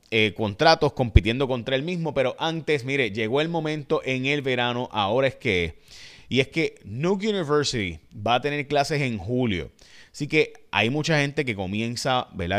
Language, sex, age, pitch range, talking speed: Spanish, male, 30-49, 105-145 Hz, 175 wpm